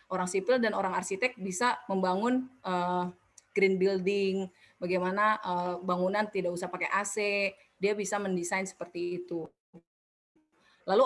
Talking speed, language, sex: 125 wpm, Indonesian, female